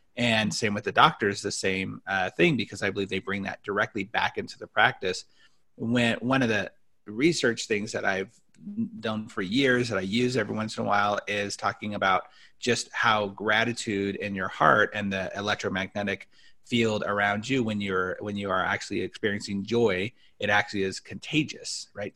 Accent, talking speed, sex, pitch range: American, 180 wpm, male, 100-120 Hz